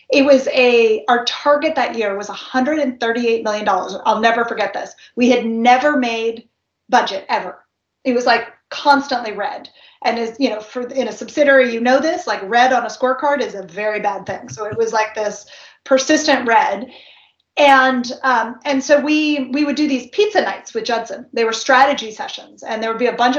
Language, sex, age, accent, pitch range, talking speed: English, female, 30-49, American, 220-260 Hz, 195 wpm